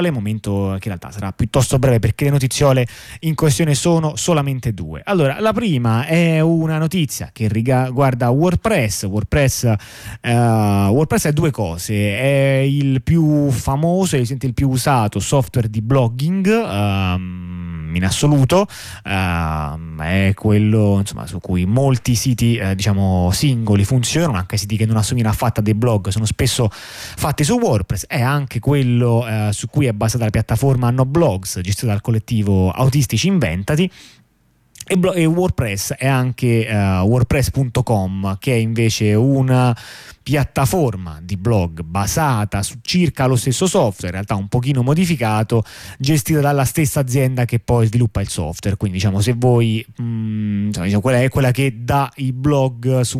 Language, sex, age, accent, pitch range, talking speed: Italian, male, 20-39, native, 105-135 Hz, 155 wpm